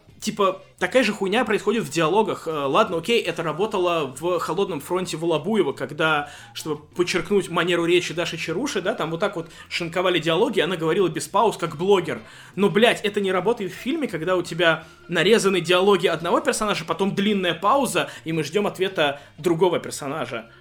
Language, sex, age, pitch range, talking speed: Russian, male, 20-39, 165-215 Hz, 170 wpm